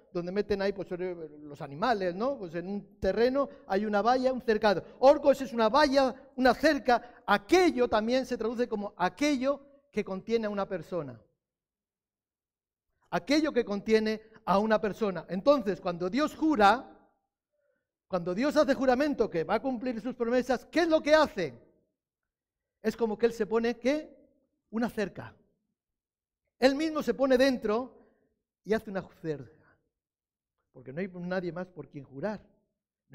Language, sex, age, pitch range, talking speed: Spanish, male, 50-69, 185-270 Hz, 150 wpm